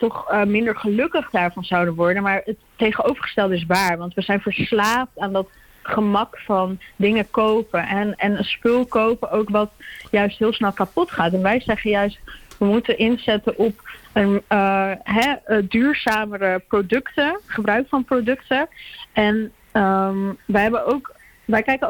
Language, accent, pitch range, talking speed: Dutch, Dutch, 195-230 Hz, 160 wpm